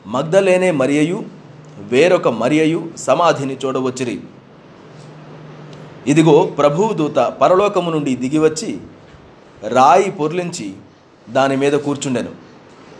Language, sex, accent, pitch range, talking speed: Telugu, male, native, 145-190 Hz, 80 wpm